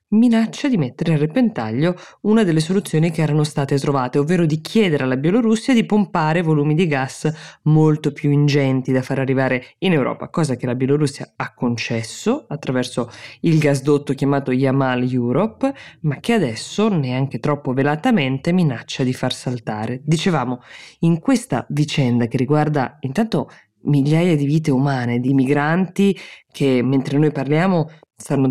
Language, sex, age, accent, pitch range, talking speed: Italian, female, 20-39, native, 130-160 Hz, 145 wpm